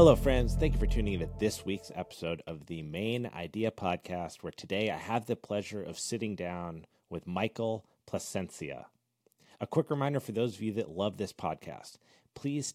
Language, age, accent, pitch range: English, 30-49, American, 95-120 Hz